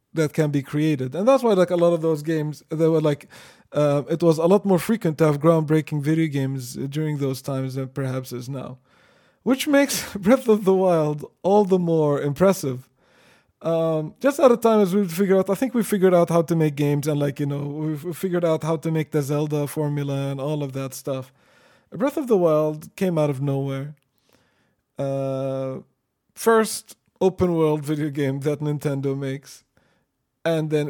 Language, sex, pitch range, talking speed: English, male, 135-165 Hz, 195 wpm